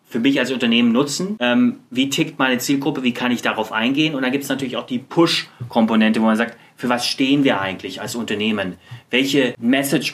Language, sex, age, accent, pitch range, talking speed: German, male, 30-49, German, 110-140 Hz, 200 wpm